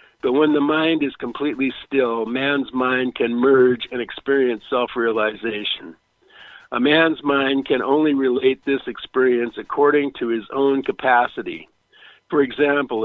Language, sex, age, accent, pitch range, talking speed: English, male, 50-69, American, 125-145 Hz, 135 wpm